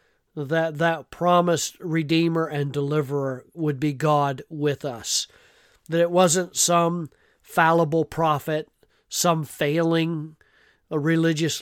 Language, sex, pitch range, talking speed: English, male, 150-175 Hz, 110 wpm